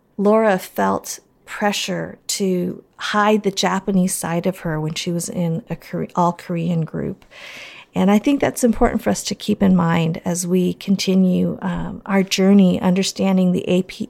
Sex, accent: female, American